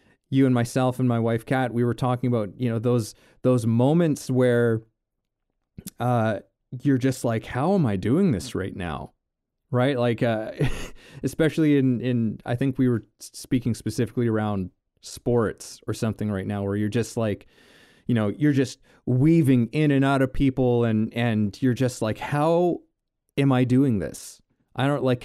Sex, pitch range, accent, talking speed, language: male, 105-135 Hz, American, 175 wpm, English